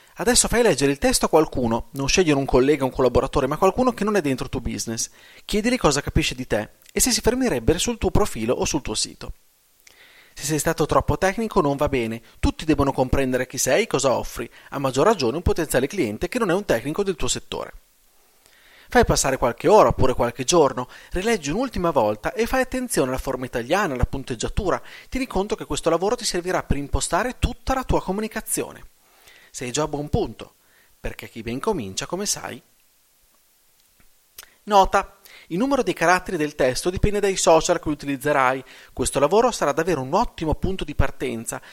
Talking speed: 190 wpm